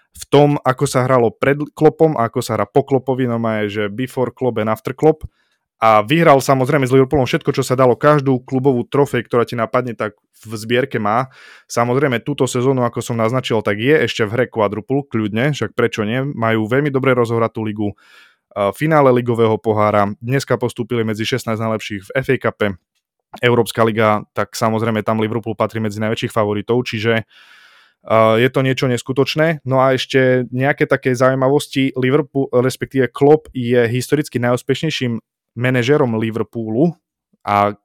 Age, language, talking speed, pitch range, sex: 20-39, Slovak, 160 wpm, 110-130 Hz, male